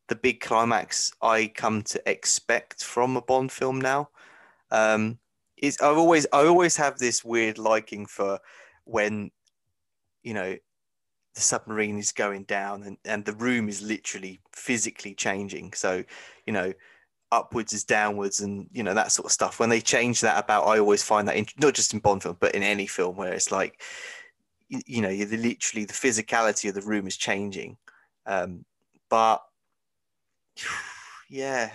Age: 20-39